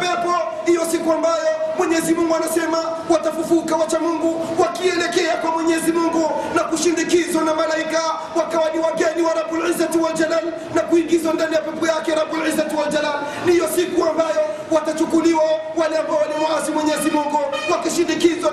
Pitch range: 260-315 Hz